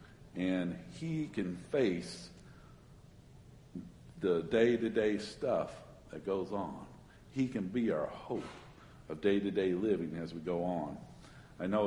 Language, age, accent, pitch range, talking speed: English, 50-69, American, 95-125 Hz, 120 wpm